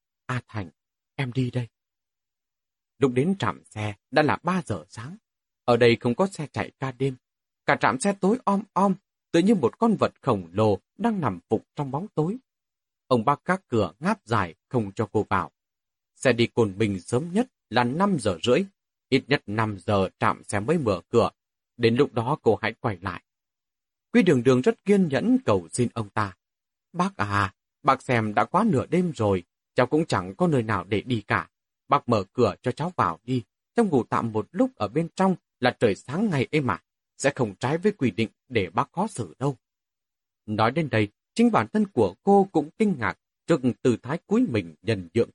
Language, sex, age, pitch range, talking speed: Vietnamese, male, 30-49, 110-175 Hz, 205 wpm